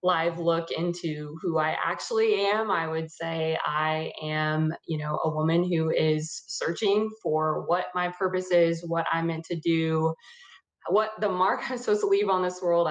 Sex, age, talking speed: female, 20-39, 185 wpm